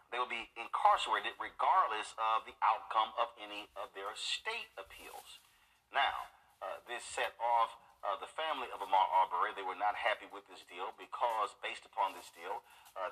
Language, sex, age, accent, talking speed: English, male, 40-59, American, 175 wpm